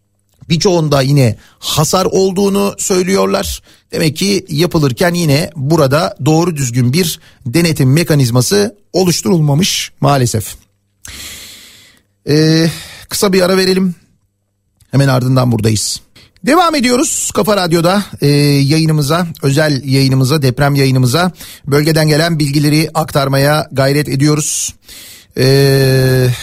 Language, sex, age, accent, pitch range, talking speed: Turkish, male, 40-59, native, 135-165 Hz, 90 wpm